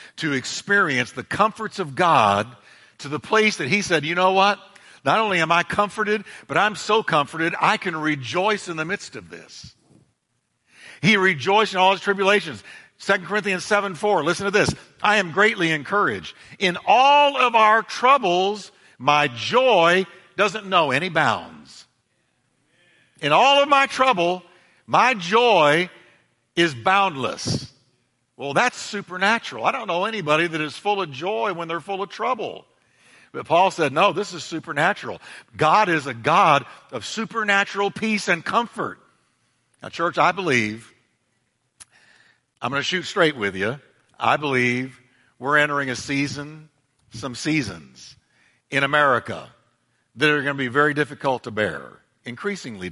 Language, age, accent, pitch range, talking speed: English, 50-69, American, 145-205 Hz, 150 wpm